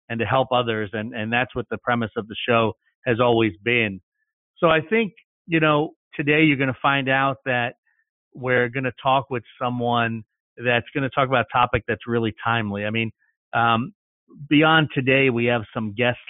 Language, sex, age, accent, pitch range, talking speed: English, male, 40-59, American, 120-150 Hz, 195 wpm